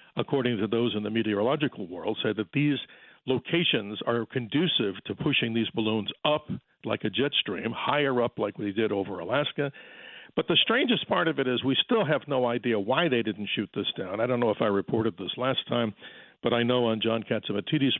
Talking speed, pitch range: 205 wpm, 110-135 Hz